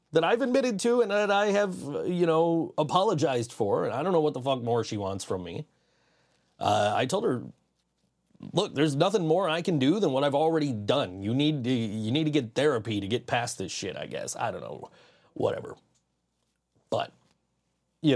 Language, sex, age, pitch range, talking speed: English, male, 30-49, 110-155 Hz, 205 wpm